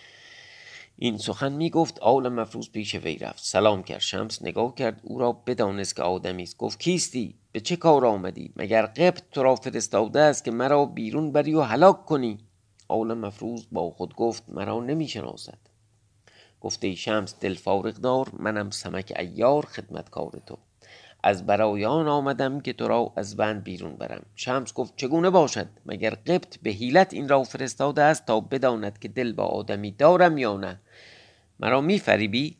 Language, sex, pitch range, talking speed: Persian, male, 105-140 Hz, 165 wpm